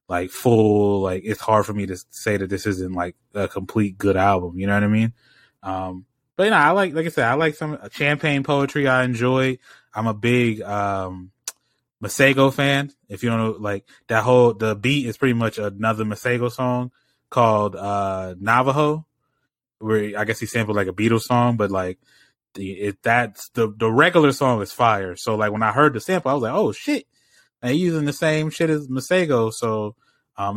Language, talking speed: English, 200 wpm